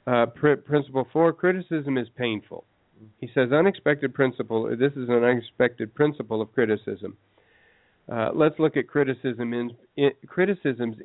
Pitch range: 115-145 Hz